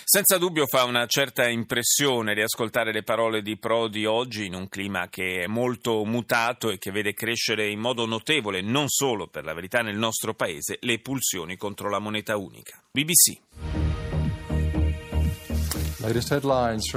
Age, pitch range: 30-49, 110-140 Hz